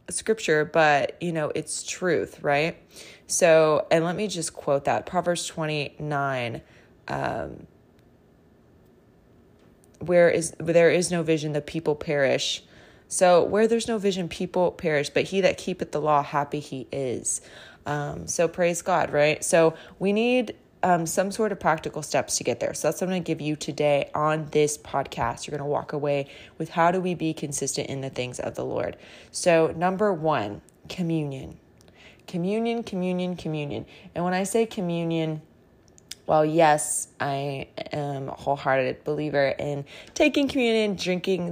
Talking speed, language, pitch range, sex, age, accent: 160 wpm, English, 145-175 Hz, female, 20-39, American